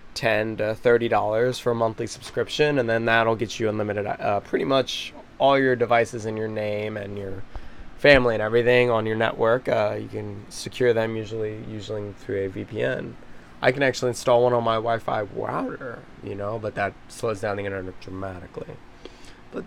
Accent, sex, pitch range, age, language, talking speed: American, male, 100-120 Hz, 20-39, English, 180 wpm